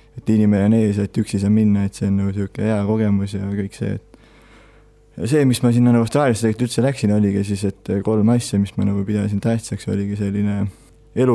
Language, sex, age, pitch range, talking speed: English, male, 20-39, 100-115 Hz, 205 wpm